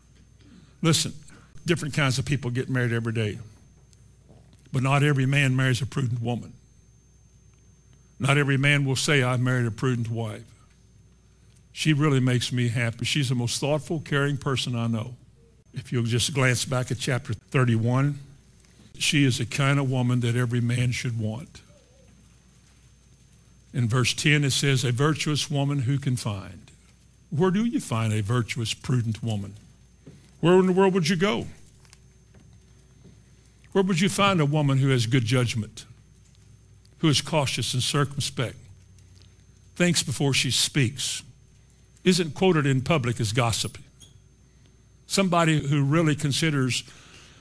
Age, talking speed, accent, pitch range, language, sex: 60-79, 145 wpm, American, 120-145 Hz, English, male